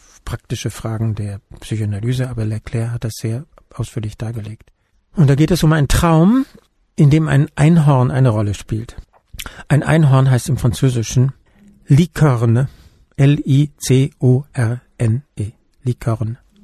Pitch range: 115-145 Hz